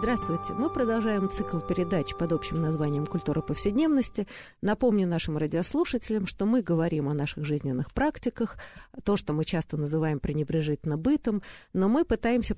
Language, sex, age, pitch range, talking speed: Russian, female, 50-69, 160-220 Hz, 145 wpm